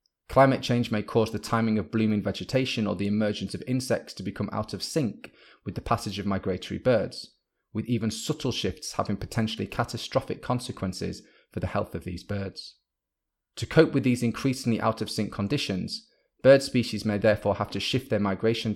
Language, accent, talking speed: English, British, 180 wpm